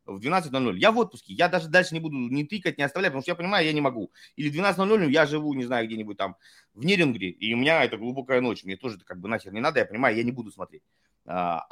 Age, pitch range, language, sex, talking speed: 20-39, 140-200 Hz, Russian, male, 255 wpm